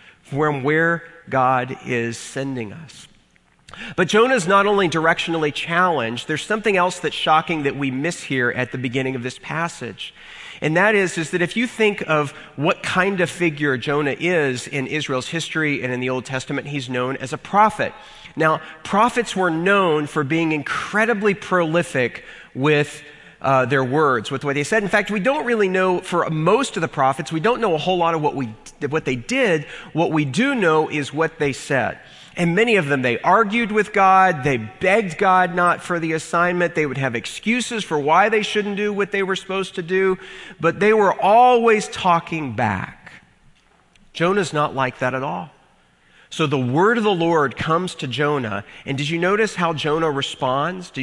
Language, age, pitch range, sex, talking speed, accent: English, 40-59, 135-185 Hz, male, 190 wpm, American